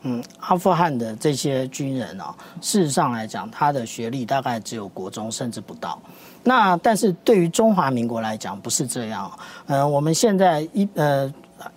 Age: 40-59